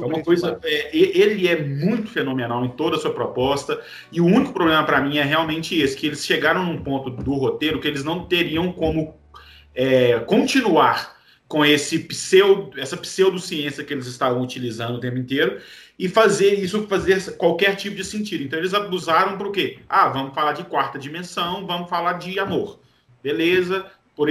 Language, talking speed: Portuguese, 180 wpm